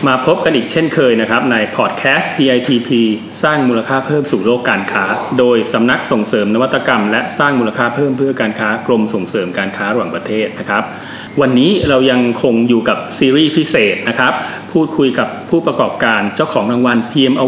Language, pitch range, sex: Thai, 115-140 Hz, male